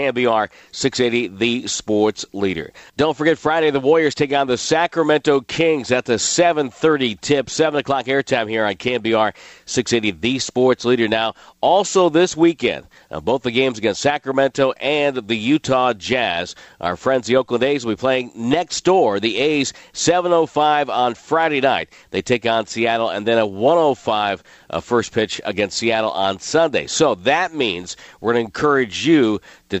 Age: 50-69